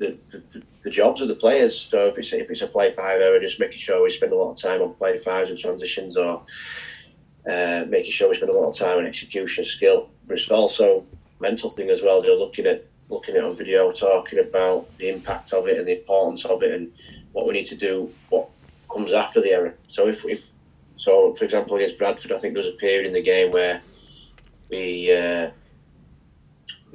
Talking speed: 215 wpm